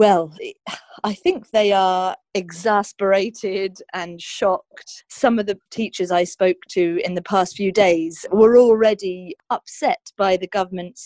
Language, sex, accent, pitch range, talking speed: English, female, British, 170-200 Hz, 140 wpm